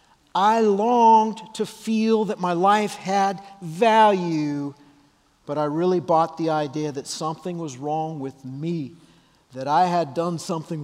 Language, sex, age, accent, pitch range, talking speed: English, male, 50-69, American, 170-235 Hz, 145 wpm